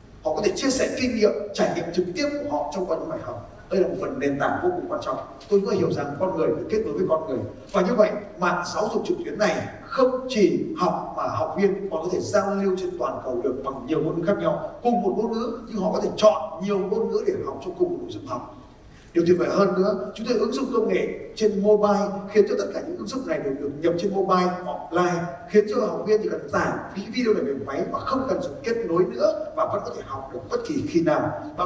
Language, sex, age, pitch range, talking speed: Vietnamese, male, 20-39, 175-230 Hz, 275 wpm